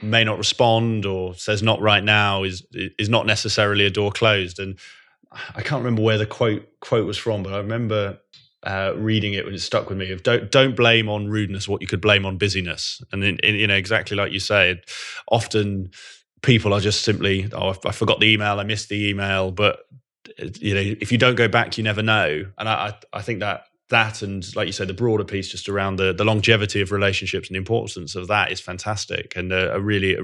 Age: 20-39